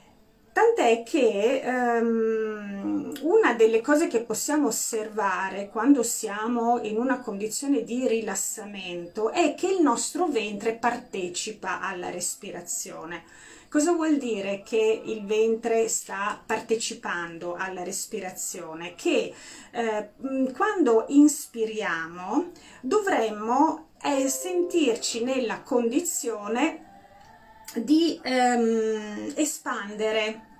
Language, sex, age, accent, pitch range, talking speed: Italian, female, 30-49, native, 220-285 Hz, 90 wpm